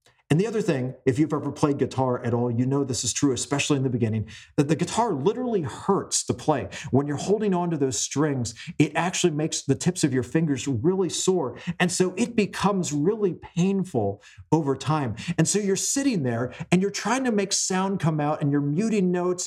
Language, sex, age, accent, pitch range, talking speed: English, male, 40-59, American, 130-175 Hz, 215 wpm